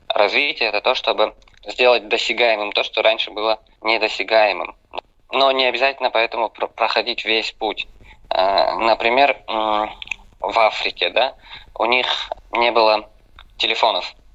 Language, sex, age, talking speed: Russian, male, 20-39, 115 wpm